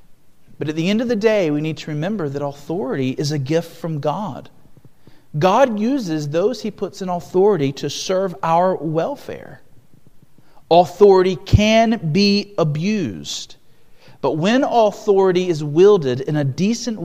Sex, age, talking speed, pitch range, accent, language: male, 40-59, 145 wpm, 145-200 Hz, American, English